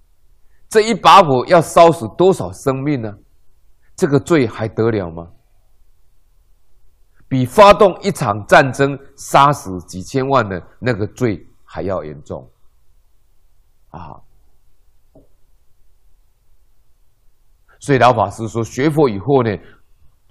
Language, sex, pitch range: Chinese, male, 100-145 Hz